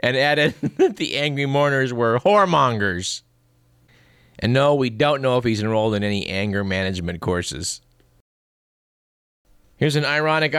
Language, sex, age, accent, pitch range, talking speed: English, male, 50-69, American, 115-150 Hz, 135 wpm